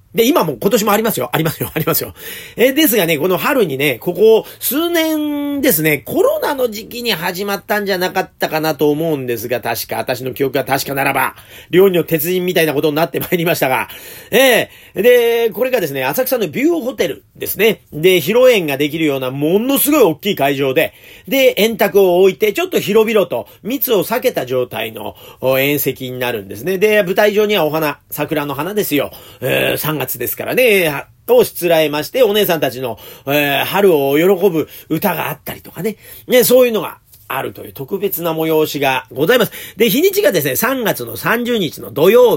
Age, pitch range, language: 40-59, 140-220 Hz, Japanese